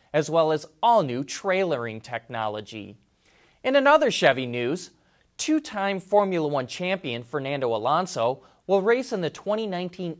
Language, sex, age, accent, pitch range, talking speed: English, male, 30-49, American, 140-215 Hz, 125 wpm